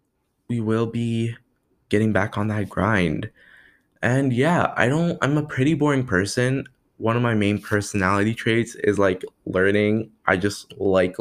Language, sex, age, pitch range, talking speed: English, male, 20-39, 100-120 Hz, 155 wpm